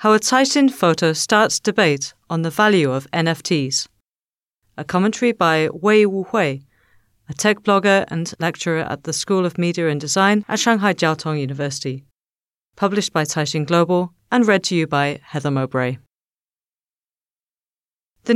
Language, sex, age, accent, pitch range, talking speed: English, female, 40-59, British, 150-205 Hz, 145 wpm